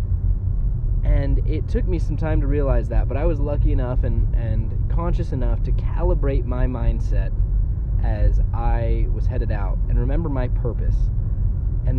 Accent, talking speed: American, 160 wpm